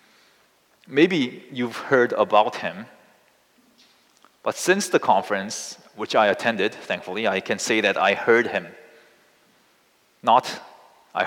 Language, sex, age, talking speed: English, male, 30-49, 115 wpm